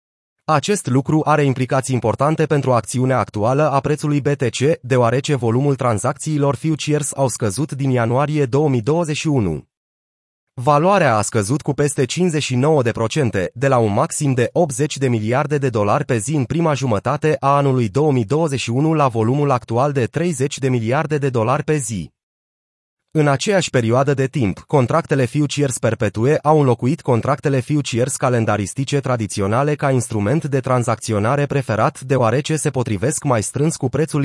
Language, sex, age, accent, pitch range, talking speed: Romanian, male, 30-49, native, 120-150 Hz, 140 wpm